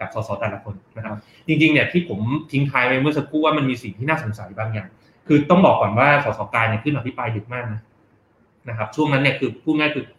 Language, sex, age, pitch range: Thai, male, 20-39, 115-145 Hz